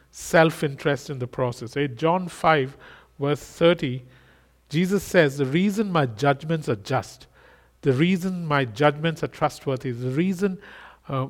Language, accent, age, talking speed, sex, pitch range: English, Indian, 50-69, 135 wpm, male, 140-175 Hz